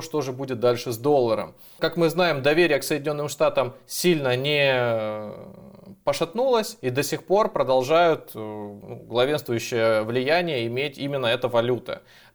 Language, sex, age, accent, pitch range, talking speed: Russian, male, 20-39, native, 125-165 Hz, 130 wpm